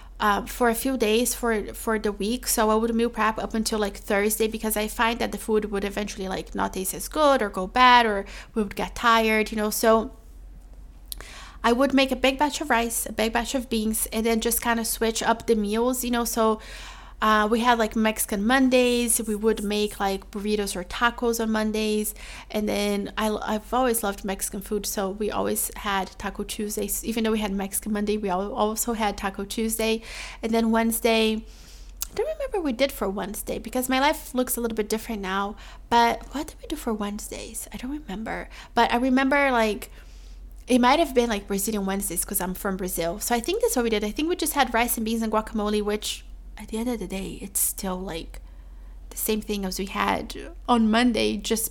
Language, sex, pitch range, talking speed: English, female, 205-235 Hz, 215 wpm